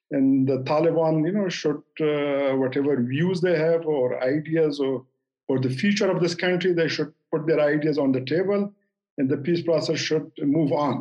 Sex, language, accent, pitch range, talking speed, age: male, English, Indian, 140-180 Hz, 190 wpm, 50-69